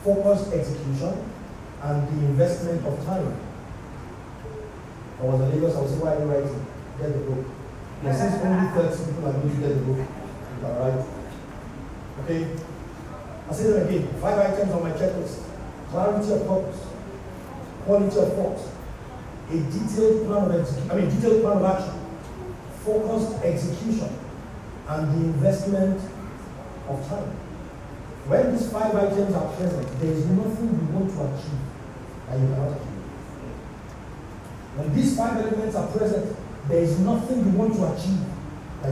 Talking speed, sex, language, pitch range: 155 wpm, male, English, 140-190 Hz